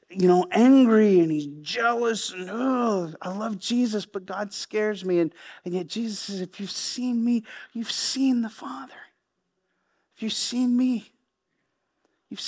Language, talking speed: English, 160 wpm